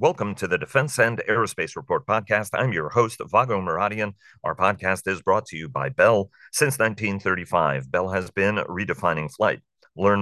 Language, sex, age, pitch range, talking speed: English, male, 40-59, 95-110 Hz, 170 wpm